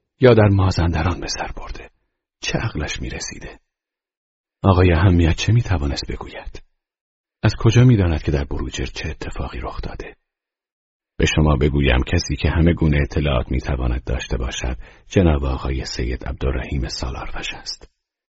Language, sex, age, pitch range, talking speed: Persian, male, 40-59, 75-95 Hz, 135 wpm